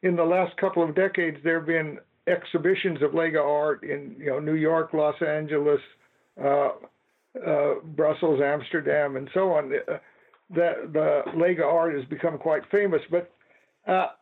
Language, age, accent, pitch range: English, 60-79, American, 155-190 Hz